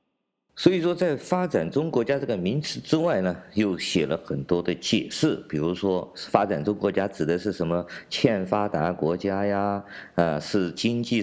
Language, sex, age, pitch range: Chinese, male, 50-69, 80-115 Hz